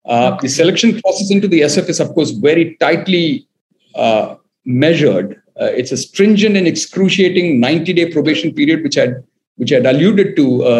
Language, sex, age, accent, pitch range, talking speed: English, male, 50-69, Indian, 160-225 Hz, 165 wpm